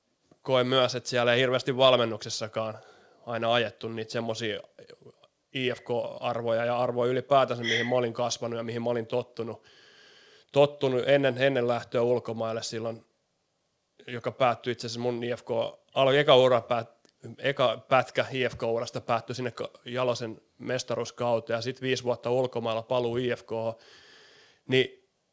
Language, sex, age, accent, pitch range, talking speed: Finnish, male, 30-49, native, 115-130 Hz, 125 wpm